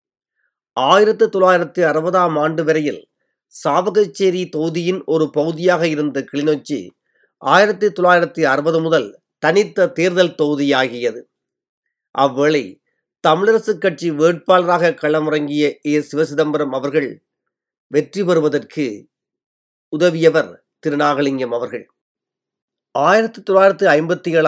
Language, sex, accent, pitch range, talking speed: Tamil, male, native, 145-180 Hz, 70 wpm